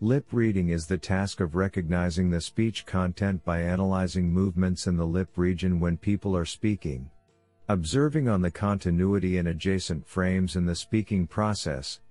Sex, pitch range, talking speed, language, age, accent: male, 85-105 Hz, 160 wpm, English, 50-69, American